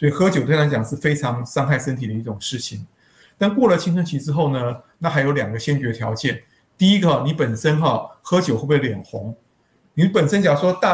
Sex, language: male, Chinese